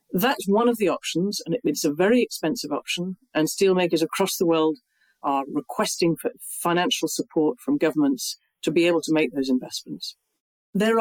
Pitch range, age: 160-245 Hz, 40-59